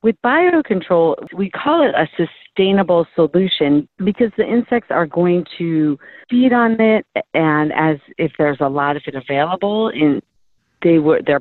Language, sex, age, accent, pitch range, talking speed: English, female, 40-59, American, 150-190 Hz, 160 wpm